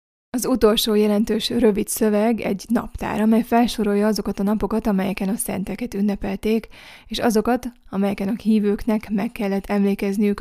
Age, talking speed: 20-39, 140 wpm